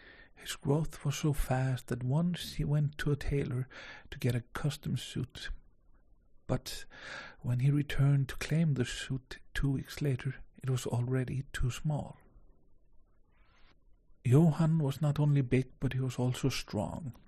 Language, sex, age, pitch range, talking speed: English, male, 50-69, 125-145 Hz, 150 wpm